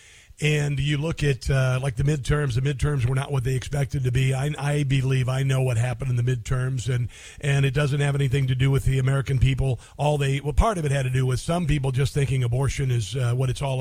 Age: 50-69